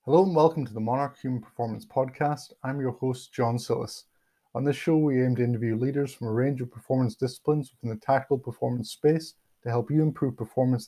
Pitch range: 110-130 Hz